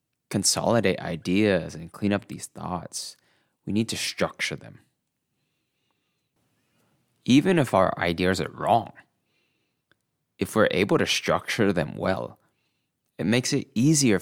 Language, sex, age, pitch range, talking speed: English, male, 20-39, 90-115 Hz, 120 wpm